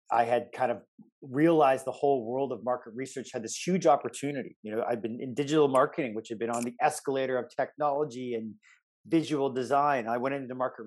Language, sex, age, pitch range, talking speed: English, male, 30-49, 115-135 Hz, 205 wpm